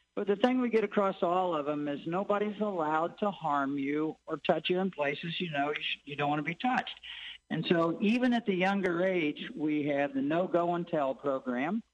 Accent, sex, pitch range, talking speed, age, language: American, male, 140-185 Hz, 205 wpm, 50-69, English